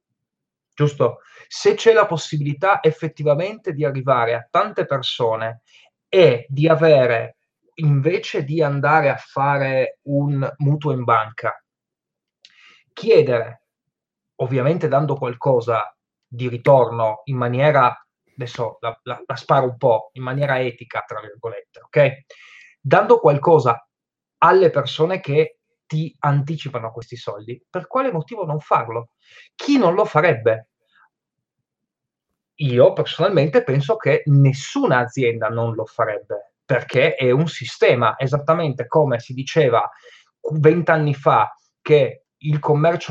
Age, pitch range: 20-39, 130-165 Hz